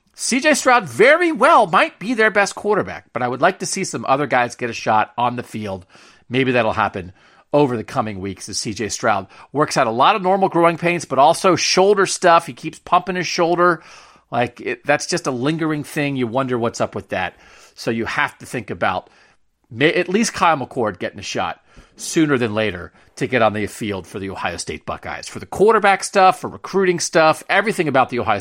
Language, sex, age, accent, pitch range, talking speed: English, male, 40-59, American, 125-195 Hz, 210 wpm